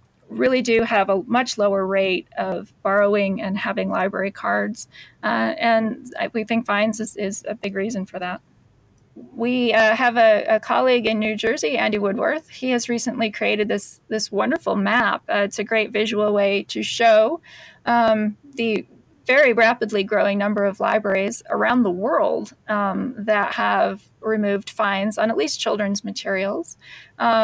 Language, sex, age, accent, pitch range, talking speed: English, female, 30-49, American, 205-235 Hz, 160 wpm